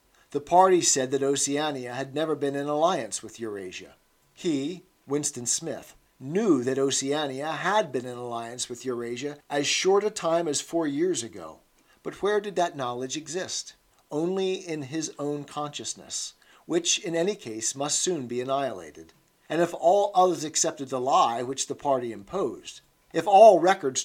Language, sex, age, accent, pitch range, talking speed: English, male, 50-69, American, 130-170 Hz, 160 wpm